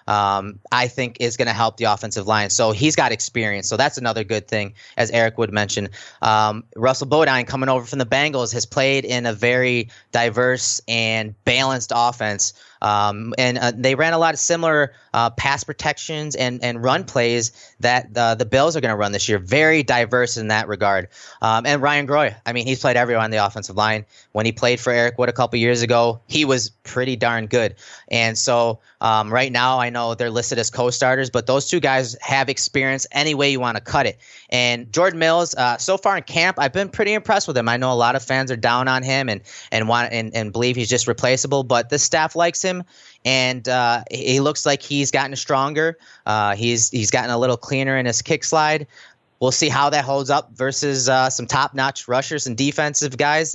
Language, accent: English, American